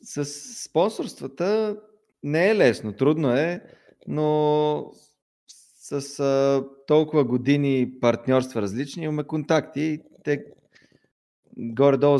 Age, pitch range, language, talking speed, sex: 20-39, 120-140 Hz, Bulgarian, 90 wpm, male